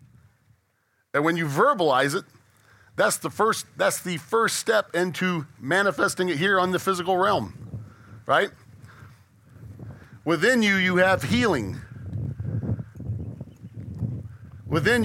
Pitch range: 115-185 Hz